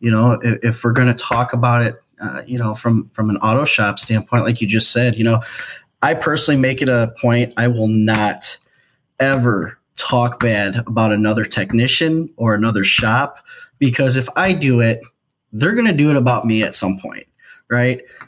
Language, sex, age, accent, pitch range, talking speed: English, male, 20-39, American, 115-135 Hz, 195 wpm